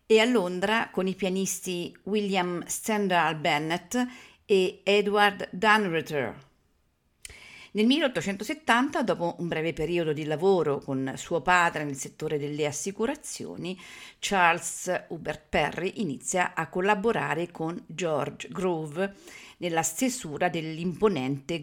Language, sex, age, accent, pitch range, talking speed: Italian, female, 50-69, native, 165-210 Hz, 110 wpm